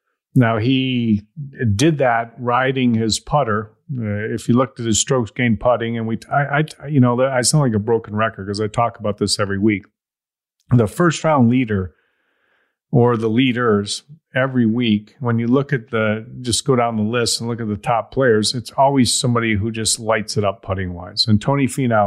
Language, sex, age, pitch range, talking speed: English, male, 40-59, 110-130 Hz, 200 wpm